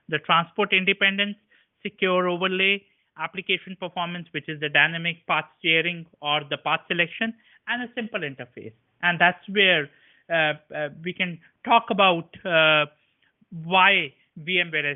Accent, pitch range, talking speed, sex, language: Indian, 150-190 Hz, 130 wpm, male, English